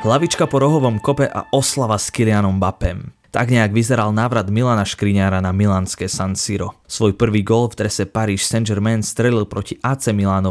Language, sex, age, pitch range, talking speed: Slovak, male, 20-39, 100-115 Hz, 170 wpm